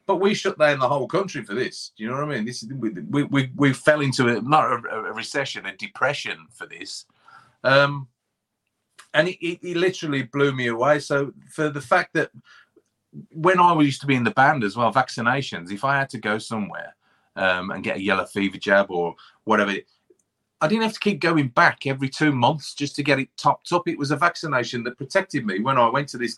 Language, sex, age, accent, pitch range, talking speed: English, male, 30-49, British, 115-150 Hz, 225 wpm